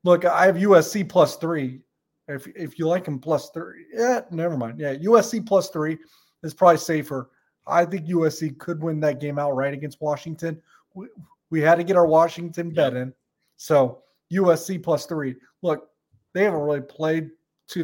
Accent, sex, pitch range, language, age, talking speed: American, male, 150-170 Hz, English, 30-49, 175 wpm